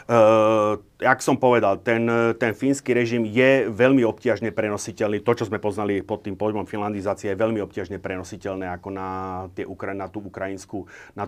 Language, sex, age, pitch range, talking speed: Slovak, male, 40-59, 100-115 Hz, 165 wpm